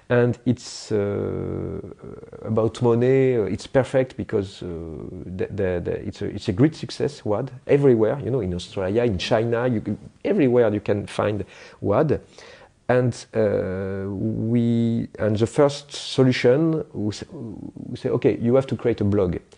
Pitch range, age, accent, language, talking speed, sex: 105-130 Hz, 40-59, French, English, 130 wpm, male